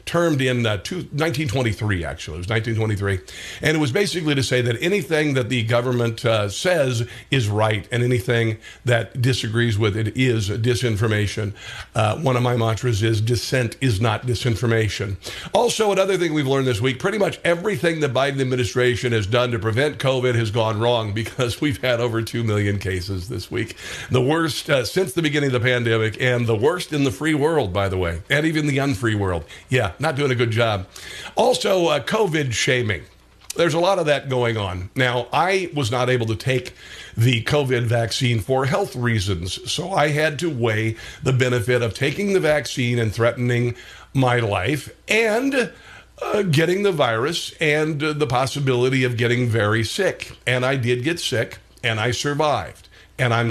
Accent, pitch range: American, 115-145 Hz